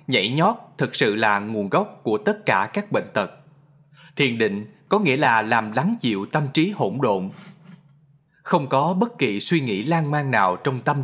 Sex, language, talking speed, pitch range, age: male, Vietnamese, 195 wpm, 125-165 Hz, 20-39